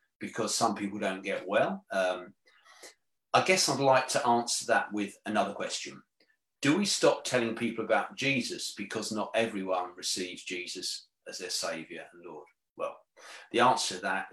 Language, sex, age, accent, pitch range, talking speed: English, male, 40-59, British, 105-130 Hz, 165 wpm